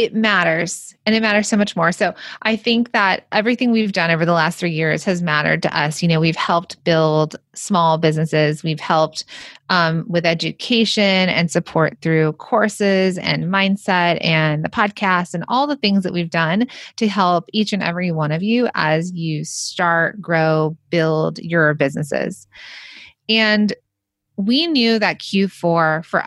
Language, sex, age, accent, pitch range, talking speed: English, female, 30-49, American, 160-205 Hz, 165 wpm